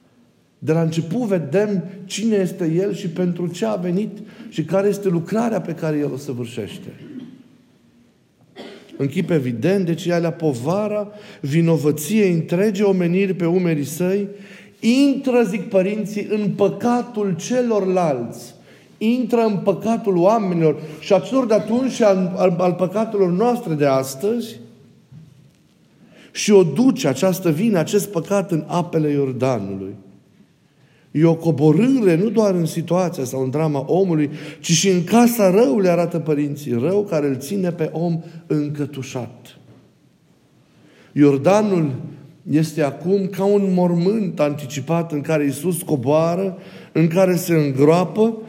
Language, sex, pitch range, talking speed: Romanian, male, 155-200 Hz, 130 wpm